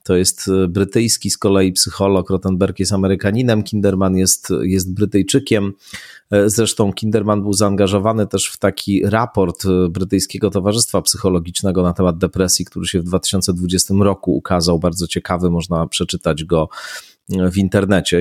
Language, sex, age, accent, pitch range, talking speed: Polish, male, 30-49, native, 90-110 Hz, 130 wpm